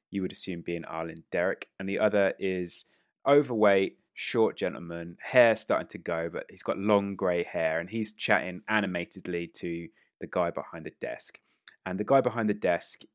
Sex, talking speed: male, 180 wpm